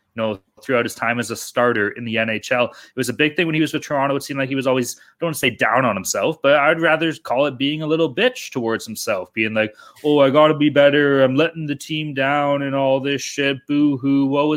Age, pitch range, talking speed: 20-39, 130-165 Hz, 265 wpm